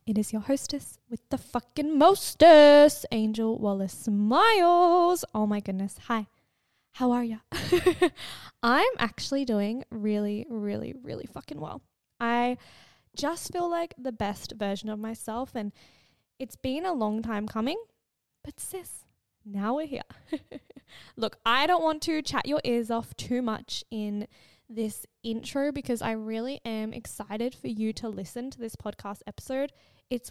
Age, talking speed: 10-29, 150 wpm